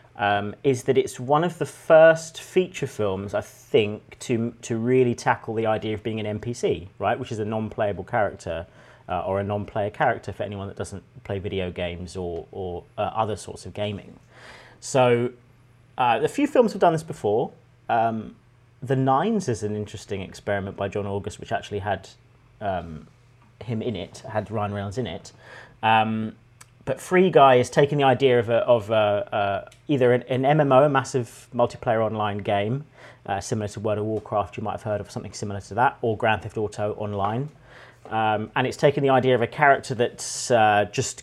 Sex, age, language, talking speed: male, 30-49, English, 190 wpm